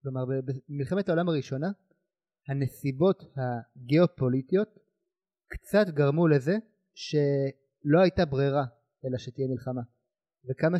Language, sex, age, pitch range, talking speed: Hebrew, male, 30-49, 135-180 Hz, 90 wpm